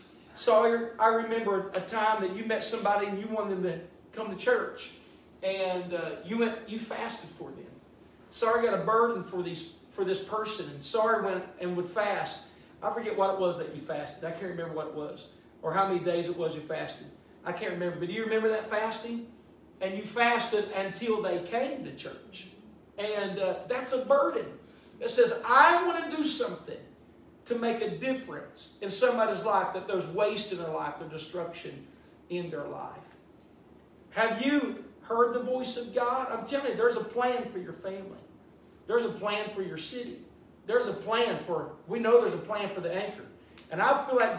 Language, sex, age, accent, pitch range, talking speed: English, male, 40-59, American, 185-245 Hz, 200 wpm